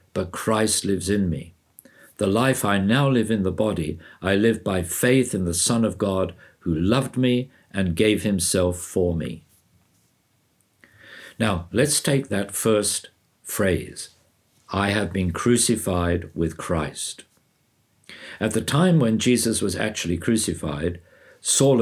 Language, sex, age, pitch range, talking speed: English, male, 60-79, 90-110 Hz, 140 wpm